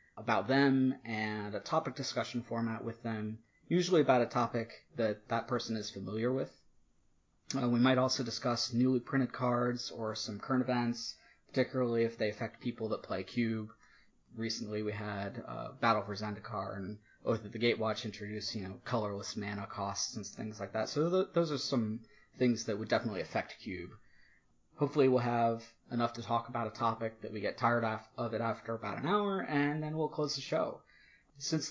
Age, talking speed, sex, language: 30-49, 185 wpm, male, English